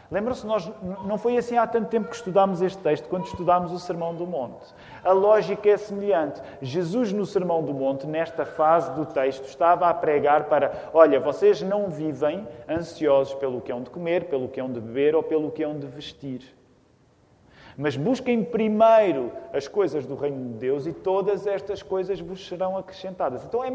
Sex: male